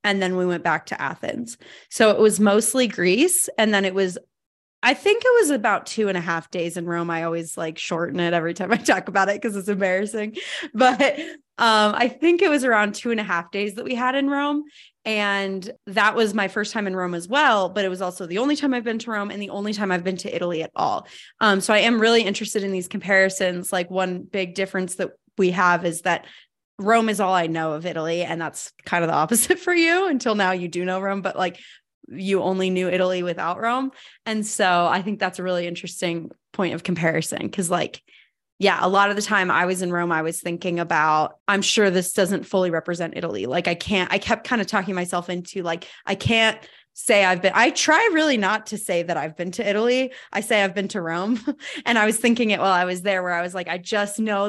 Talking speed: 240 wpm